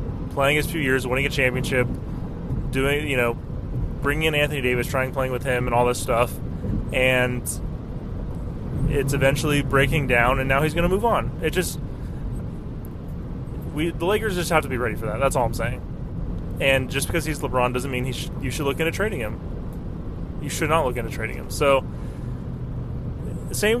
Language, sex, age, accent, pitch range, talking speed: English, male, 20-39, American, 120-140 Hz, 185 wpm